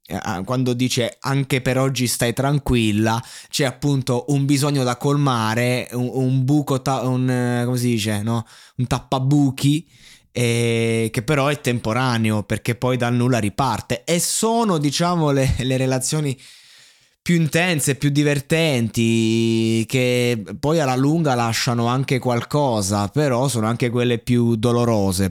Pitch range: 115-140 Hz